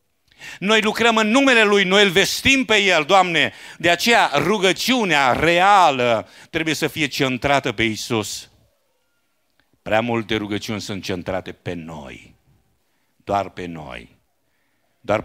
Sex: male